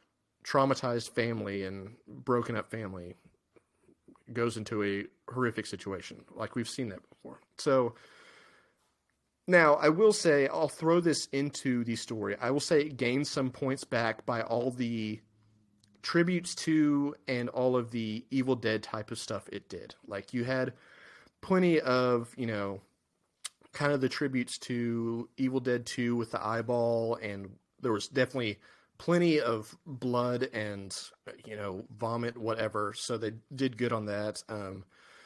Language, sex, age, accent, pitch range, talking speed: English, male, 30-49, American, 105-130 Hz, 150 wpm